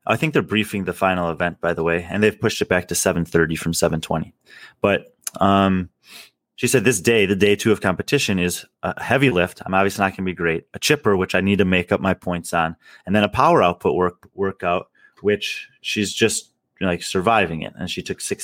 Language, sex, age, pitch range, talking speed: English, male, 30-49, 90-115 Hz, 230 wpm